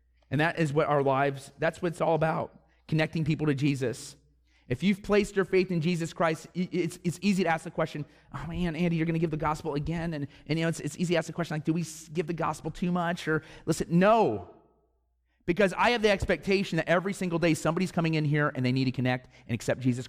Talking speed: 245 wpm